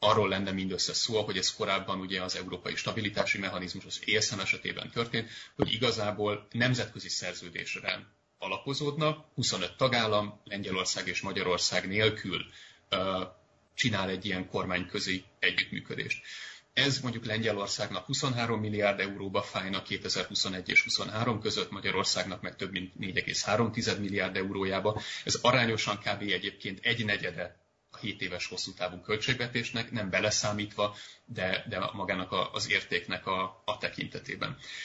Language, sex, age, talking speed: Hungarian, male, 30-49, 125 wpm